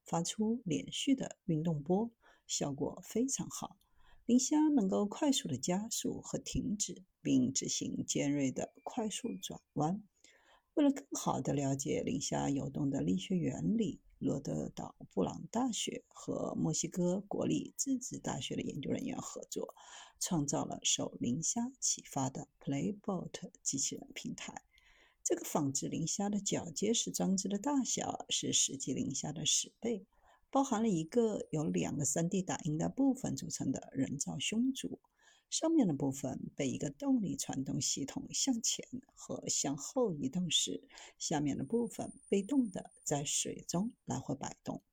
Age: 50-69